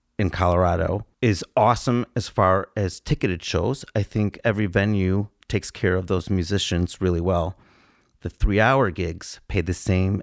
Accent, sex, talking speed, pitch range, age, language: American, male, 155 wpm, 90-115 Hz, 30-49, English